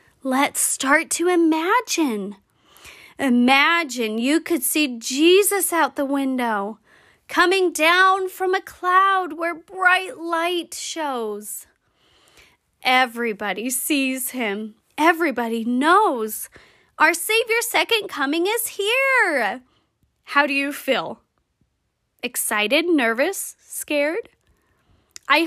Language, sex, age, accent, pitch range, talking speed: English, female, 30-49, American, 230-340 Hz, 95 wpm